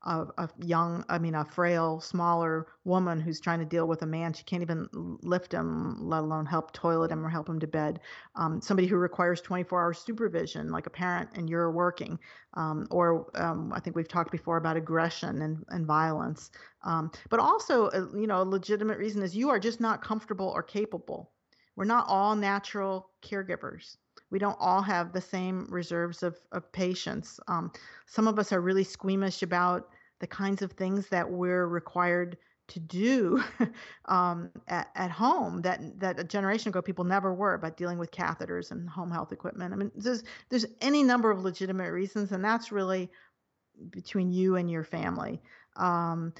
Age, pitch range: 40-59, 170-195 Hz